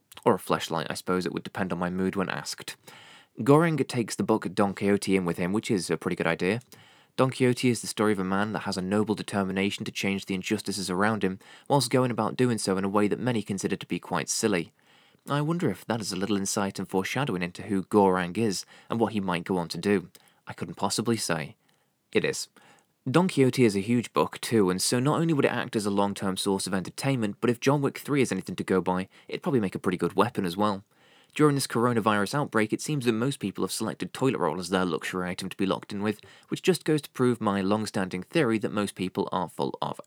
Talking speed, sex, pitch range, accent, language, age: 245 wpm, male, 95-120 Hz, British, English, 20-39